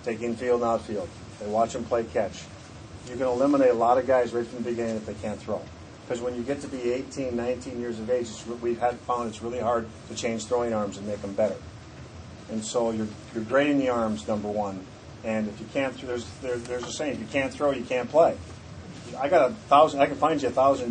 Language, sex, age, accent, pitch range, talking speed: English, male, 40-59, American, 110-130 Hz, 245 wpm